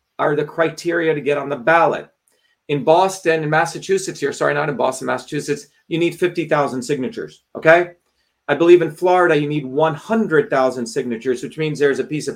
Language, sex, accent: English, male, American